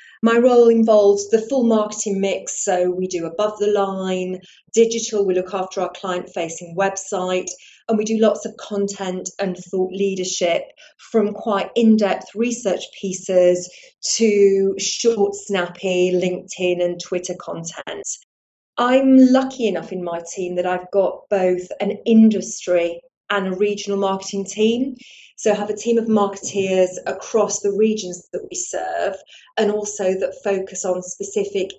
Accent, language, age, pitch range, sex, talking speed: British, English, 30-49, 185-220 Hz, female, 145 wpm